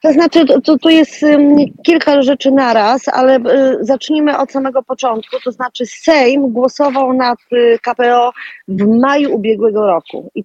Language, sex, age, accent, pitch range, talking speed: Polish, female, 30-49, native, 215-265 Hz, 145 wpm